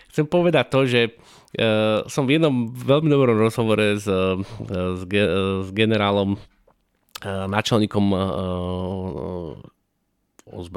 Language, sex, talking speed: Slovak, male, 80 wpm